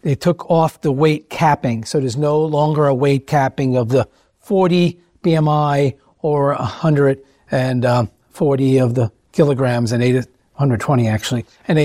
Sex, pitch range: male, 125-165 Hz